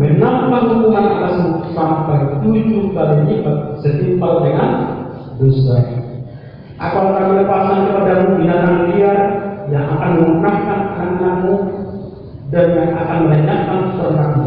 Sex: male